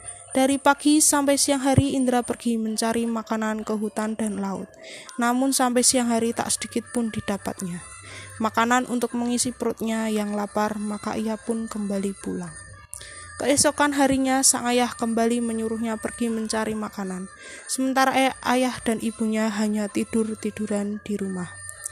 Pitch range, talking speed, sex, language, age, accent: 205-245 Hz, 135 wpm, female, Indonesian, 10-29, native